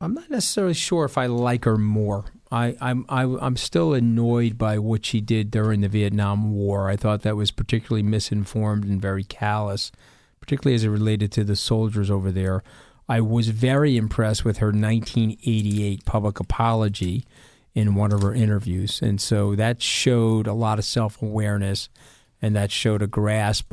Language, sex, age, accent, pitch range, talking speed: English, male, 40-59, American, 105-120 Hz, 170 wpm